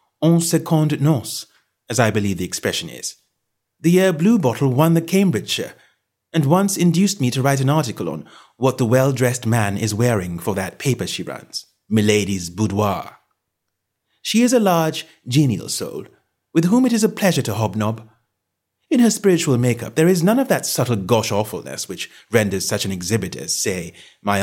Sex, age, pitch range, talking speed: male, 30-49, 105-175 Hz, 170 wpm